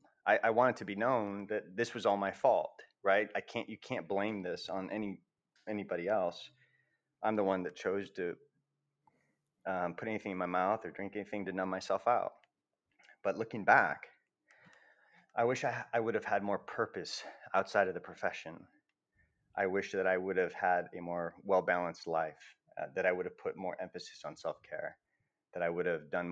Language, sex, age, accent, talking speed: English, male, 30-49, American, 190 wpm